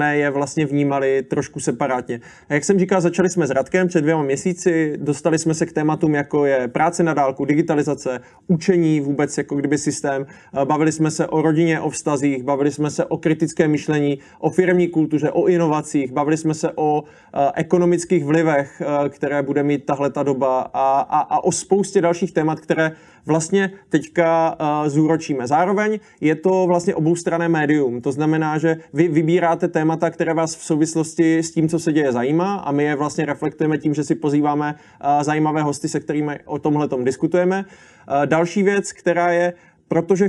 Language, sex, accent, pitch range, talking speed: Czech, male, native, 145-170 Hz, 170 wpm